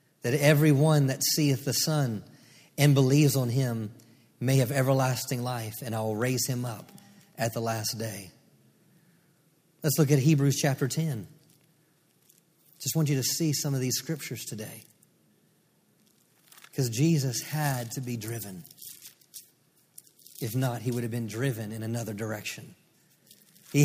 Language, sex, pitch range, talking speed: English, male, 135-185 Hz, 145 wpm